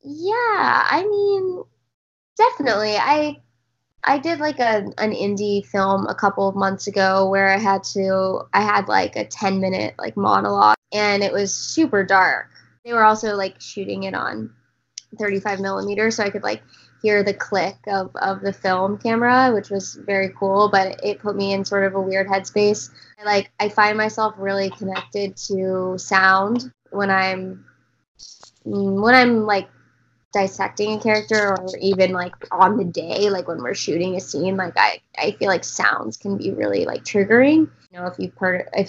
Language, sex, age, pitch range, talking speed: English, female, 20-39, 190-215 Hz, 180 wpm